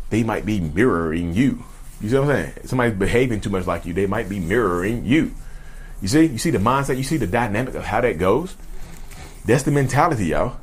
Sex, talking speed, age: male, 225 wpm, 30-49